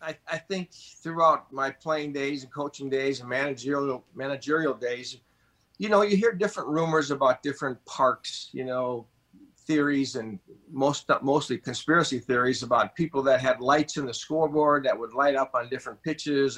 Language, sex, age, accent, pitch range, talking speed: English, male, 50-69, American, 135-155 Hz, 165 wpm